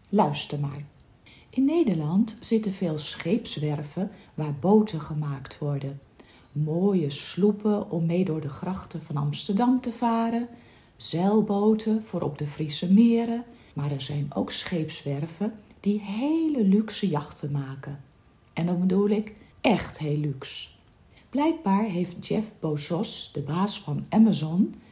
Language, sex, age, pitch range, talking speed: Dutch, female, 40-59, 150-215 Hz, 130 wpm